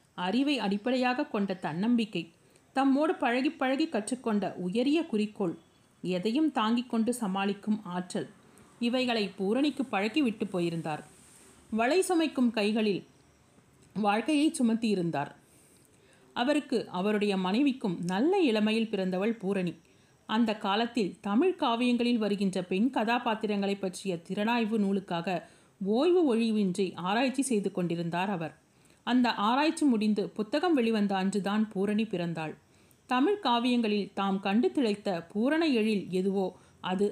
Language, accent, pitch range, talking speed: Tamil, native, 190-245 Hz, 105 wpm